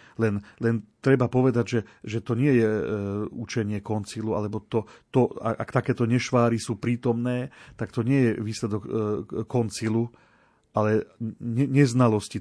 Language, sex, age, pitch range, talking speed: Slovak, male, 40-59, 110-135 Hz, 145 wpm